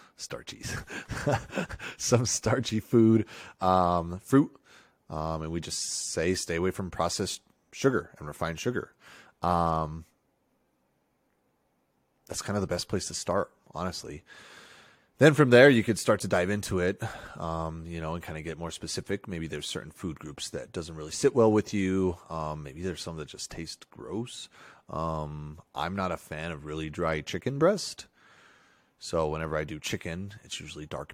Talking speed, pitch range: 165 wpm, 80-100 Hz